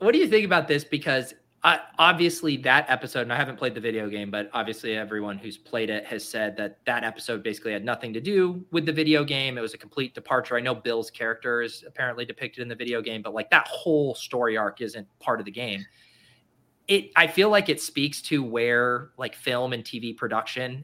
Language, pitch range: English, 120-150 Hz